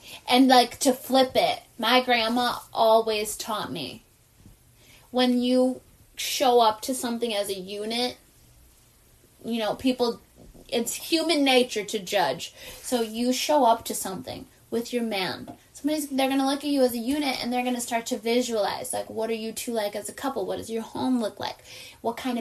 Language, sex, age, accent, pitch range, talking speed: English, female, 10-29, American, 210-250 Hz, 185 wpm